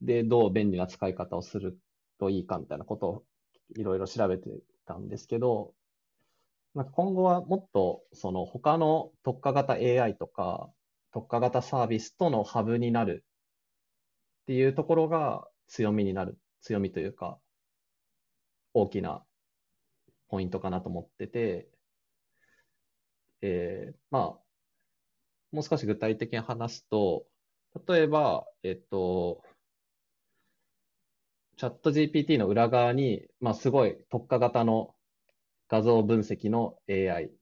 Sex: male